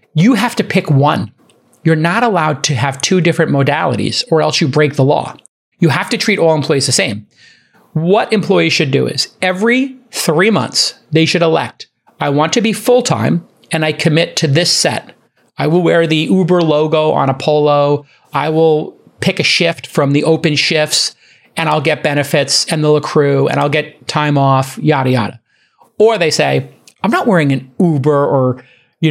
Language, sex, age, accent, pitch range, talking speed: English, male, 40-59, American, 140-180 Hz, 190 wpm